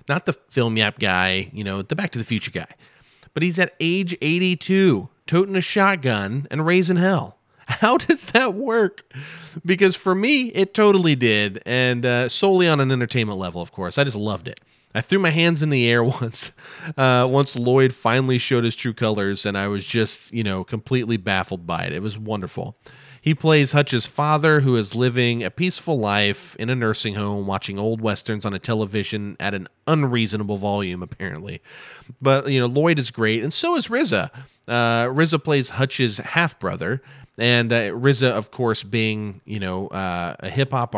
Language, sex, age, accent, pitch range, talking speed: English, male, 30-49, American, 105-150 Hz, 190 wpm